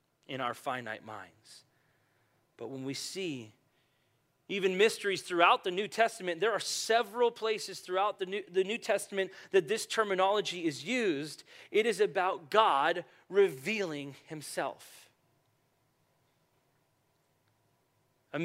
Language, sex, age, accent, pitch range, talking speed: English, male, 30-49, American, 140-220 Hz, 115 wpm